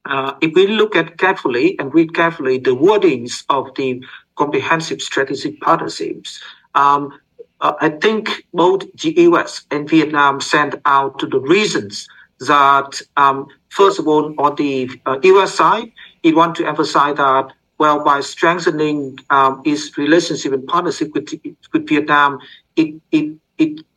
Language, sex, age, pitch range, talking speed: English, male, 50-69, 140-235 Hz, 150 wpm